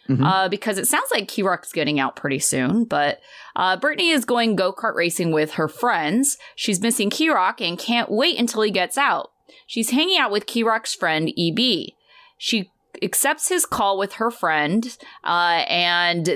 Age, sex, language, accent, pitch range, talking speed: 20-39, female, English, American, 175-240 Hz, 170 wpm